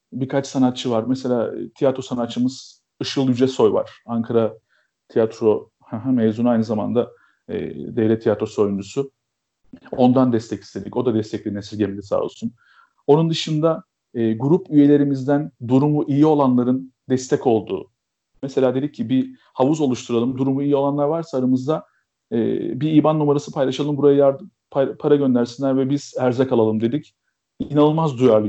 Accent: native